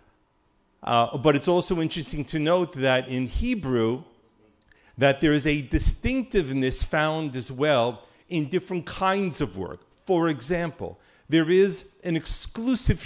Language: English